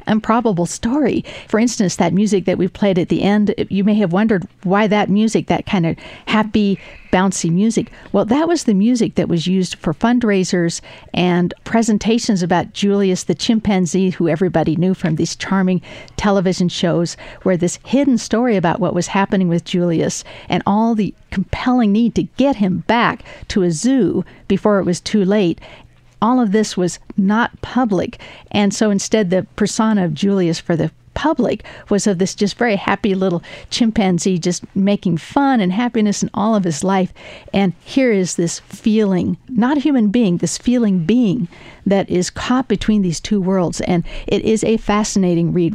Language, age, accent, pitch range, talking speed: English, 50-69, American, 180-215 Hz, 175 wpm